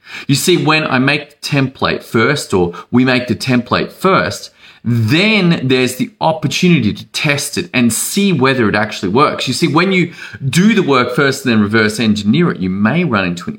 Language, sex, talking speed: English, male, 200 wpm